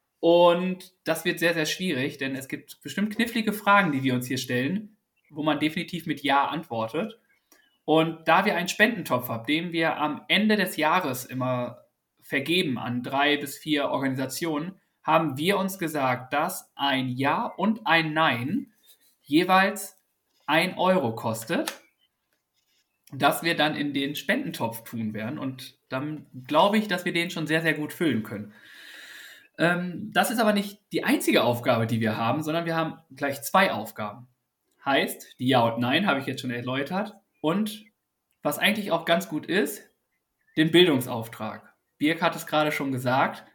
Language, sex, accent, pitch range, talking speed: German, male, German, 130-180 Hz, 165 wpm